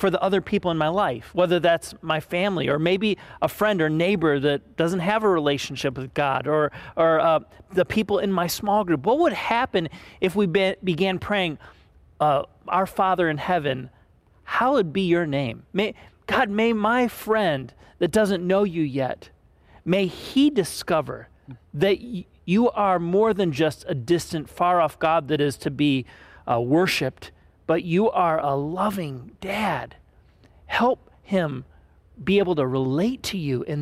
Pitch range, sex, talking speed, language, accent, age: 145-200 Hz, male, 170 wpm, English, American, 40-59